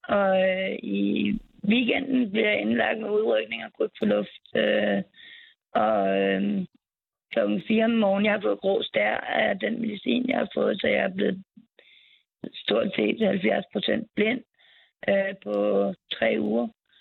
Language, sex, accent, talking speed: Danish, female, native, 150 wpm